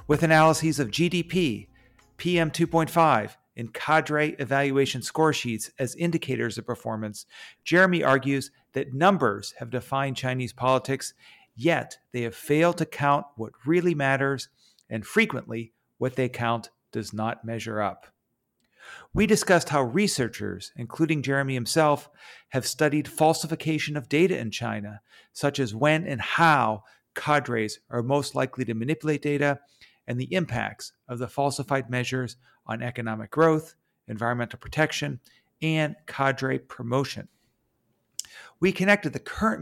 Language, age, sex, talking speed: English, 40-59, male, 130 wpm